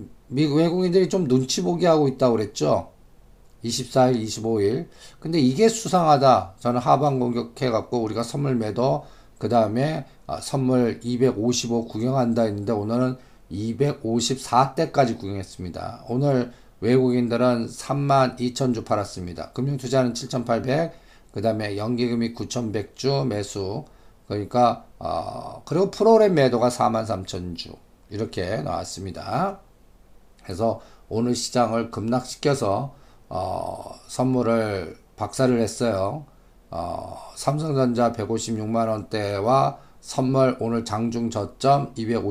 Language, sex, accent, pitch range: Korean, male, native, 110-140 Hz